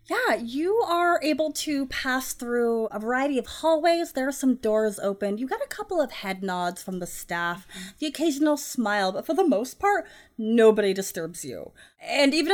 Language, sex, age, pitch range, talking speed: English, female, 20-39, 195-285 Hz, 185 wpm